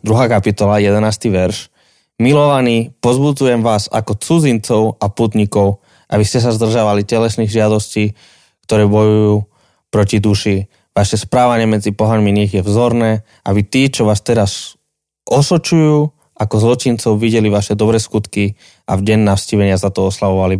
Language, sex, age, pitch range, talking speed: Slovak, male, 20-39, 105-130 Hz, 135 wpm